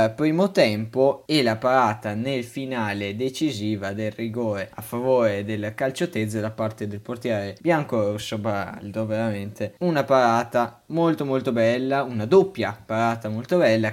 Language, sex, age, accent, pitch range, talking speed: Italian, male, 20-39, native, 110-135 Hz, 140 wpm